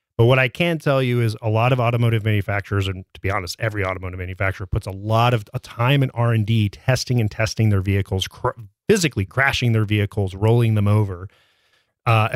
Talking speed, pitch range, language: 190 wpm, 105-125 Hz, English